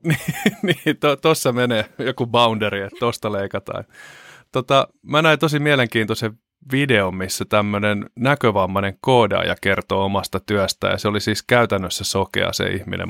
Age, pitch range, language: 20-39, 95-115 Hz, Finnish